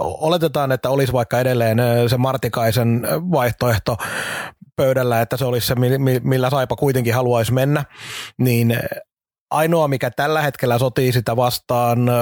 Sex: male